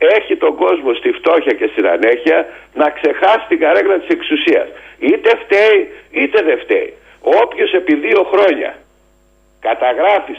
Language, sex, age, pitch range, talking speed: Greek, male, 60-79, 335-455 Hz, 140 wpm